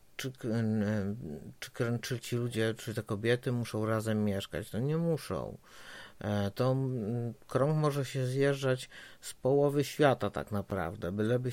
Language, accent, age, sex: Polish, native, 50-69, male